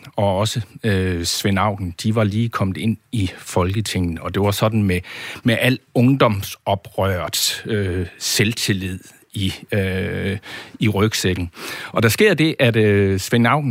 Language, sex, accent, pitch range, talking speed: Danish, male, native, 95-120 Hz, 140 wpm